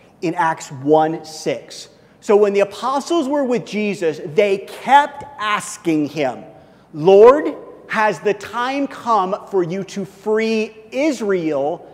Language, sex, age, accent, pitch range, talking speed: English, male, 40-59, American, 155-220 Hz, 125 wpm